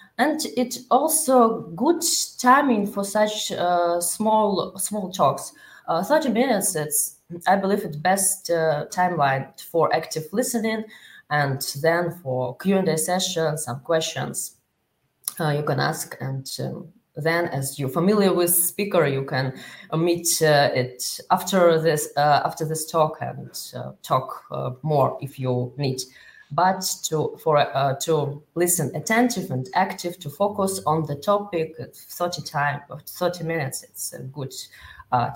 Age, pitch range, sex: 20-39, 140-185 Hz, female